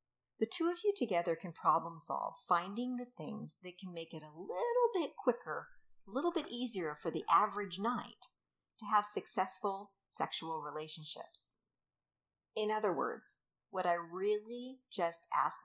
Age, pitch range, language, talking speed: 50-69, 165-235 Hz, English, 150 wpm